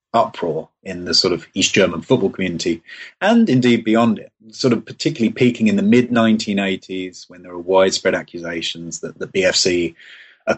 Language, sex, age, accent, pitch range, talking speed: English, male, 30-49, British, 95-115 Hz, 165 wpm